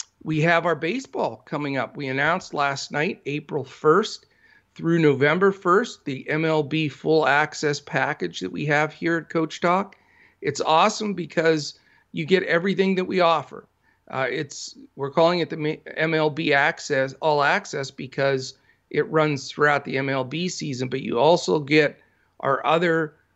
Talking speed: 150 wpm